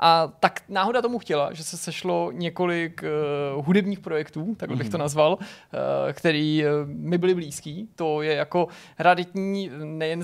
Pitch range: 150-175 Hz